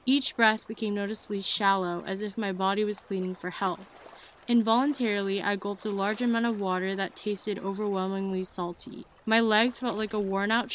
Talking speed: 175 wpm